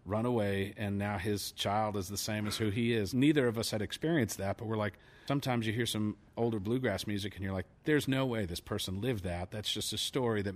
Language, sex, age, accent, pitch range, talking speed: English, male, 40-59, American, 100-120 Hz, 250 wpm